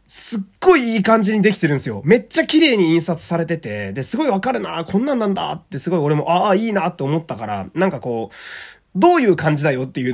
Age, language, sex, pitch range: 20-39, Japanese, male, 150-245 Hz